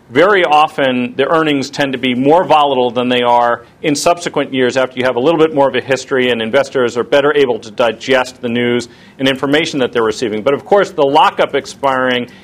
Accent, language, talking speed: American, English, 215 wpm